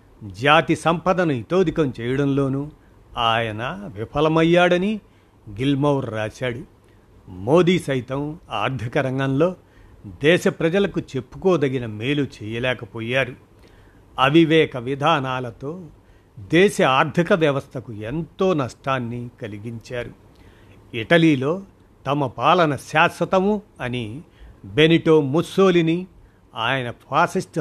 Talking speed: 75 wpm